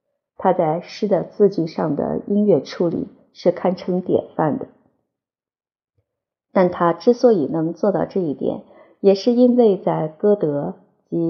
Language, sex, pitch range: Chinese, female, 165-225 Hz